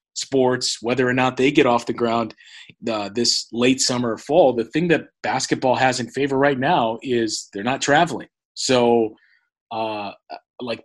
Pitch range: 120-140 Hz